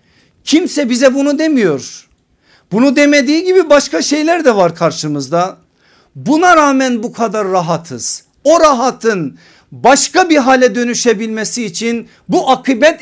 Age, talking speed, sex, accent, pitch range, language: 50-69, 120 wpm, male, native, 170-255 Hz, Turkish